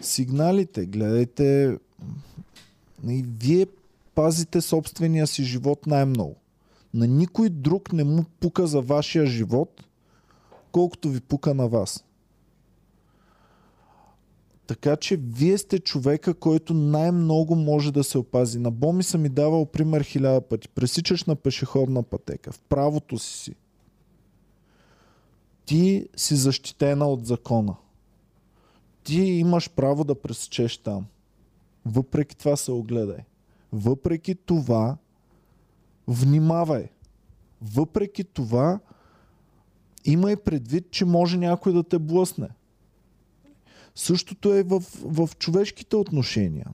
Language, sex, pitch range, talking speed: Bulgarian, male, 120-170 Hz, 105 wpm